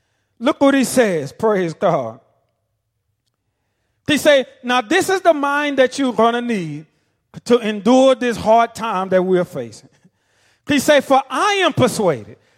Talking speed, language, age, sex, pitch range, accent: 155 wpm, English, 40-59, male, 225-300 Hz, American